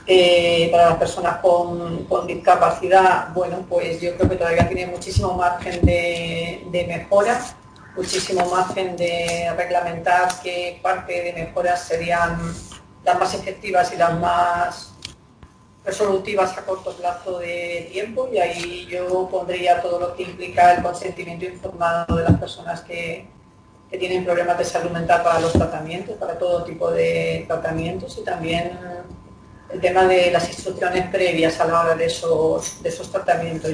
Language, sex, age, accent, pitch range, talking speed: Spanish, female, 40-59, Spanish, 170-185 Hz, 150 wpm